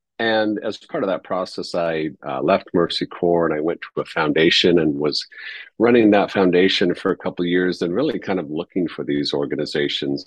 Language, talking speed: English, 205 wpm